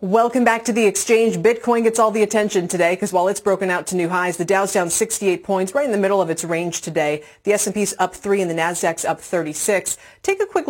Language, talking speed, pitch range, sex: English, 245 wpm, 170-220 Hz, female